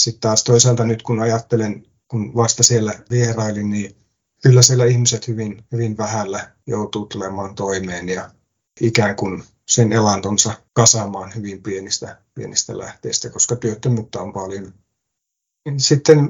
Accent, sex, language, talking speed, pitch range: native, male, Finnish, 130 wpm, 100-125 Hz